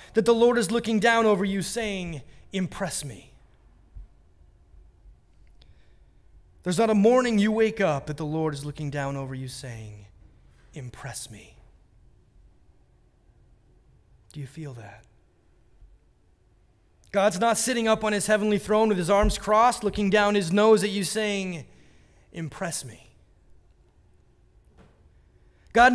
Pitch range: 185-270 Hz